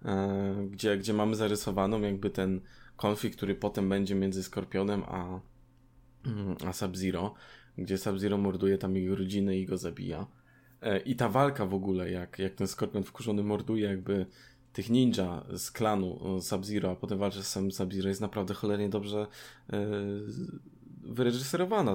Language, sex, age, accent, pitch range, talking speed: Polish, male, 20-39, native, 95-115 Hz, 140 wpm